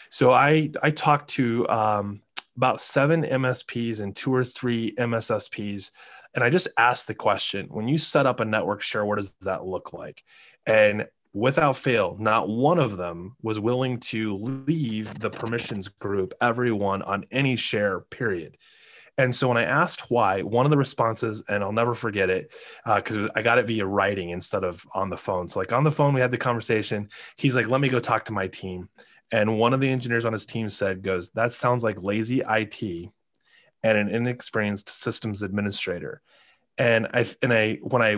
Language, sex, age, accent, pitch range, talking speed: English, male, 20-39, American, 105-125 Hz, 190 wpm